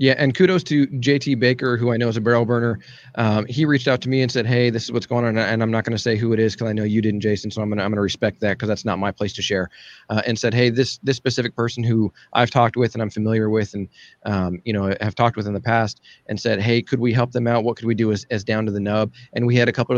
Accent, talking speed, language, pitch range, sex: American, 325 wpm, English, 105-125 Hz, male